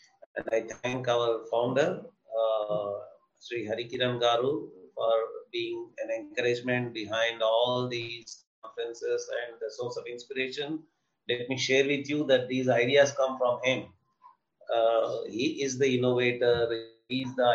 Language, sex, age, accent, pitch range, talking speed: English, male, 30-49, Indian, 115-160 Hz, 140 wpm